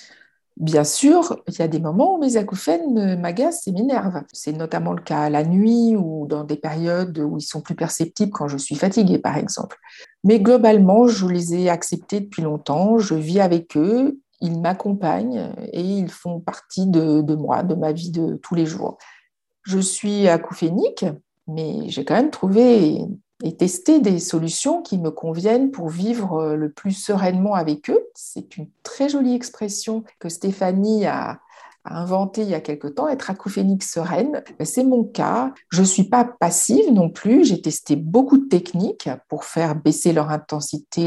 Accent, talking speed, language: French, 180 wpm, French